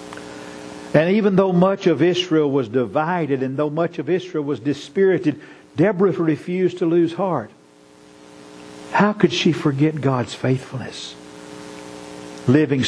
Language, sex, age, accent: English, male, 50-69, American